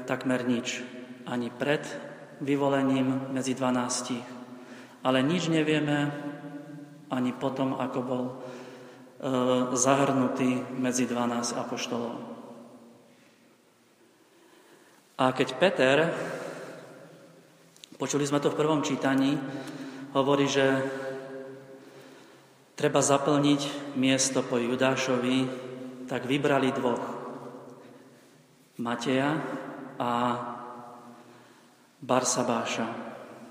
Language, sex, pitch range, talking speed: Slovak, male, 125-135 Hz, 75 wpm